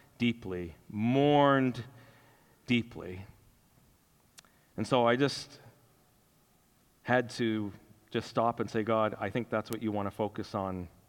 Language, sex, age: English, male, 40-59